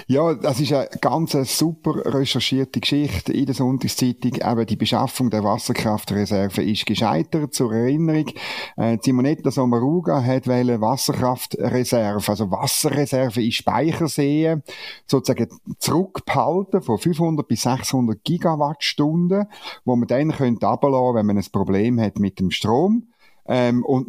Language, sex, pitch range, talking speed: German, male, 120-155 Hz, 130 wpm